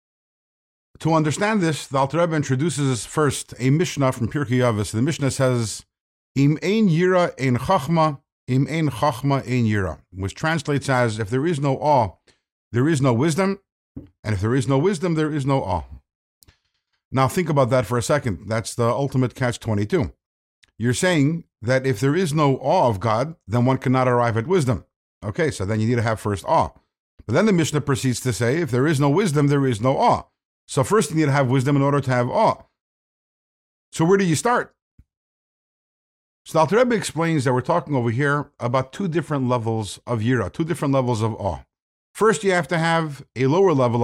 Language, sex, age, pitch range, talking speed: English, male, 50-69, 120-160 Hz, 200 wpm